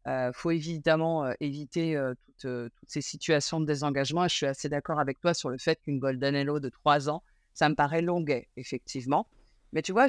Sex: female